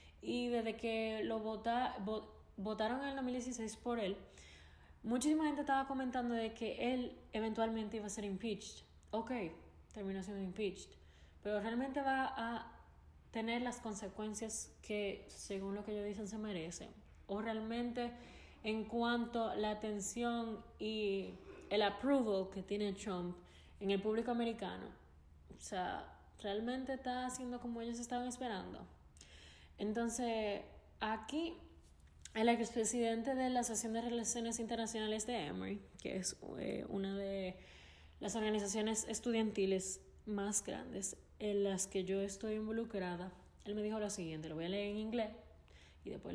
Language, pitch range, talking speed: Spanish, 190-235 Hz, 140 wpm